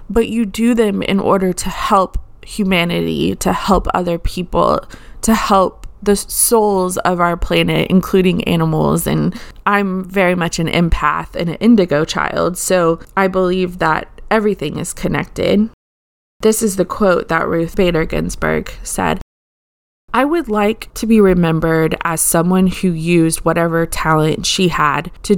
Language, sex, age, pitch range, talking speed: English, female, 20-39, 160-200 Hz, 150 wpm